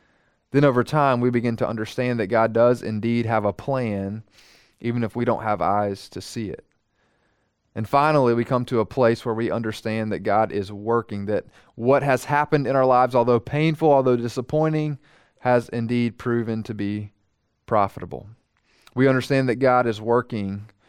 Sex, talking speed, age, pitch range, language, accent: male, 170 wpm, 30-49, 110-135 Hz, English, American